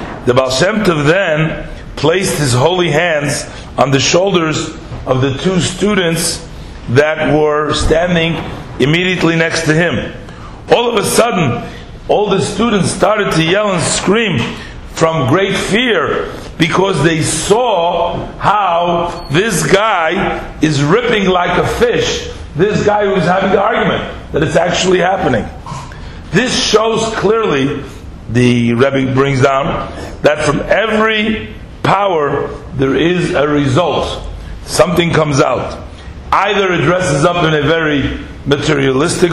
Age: 50-69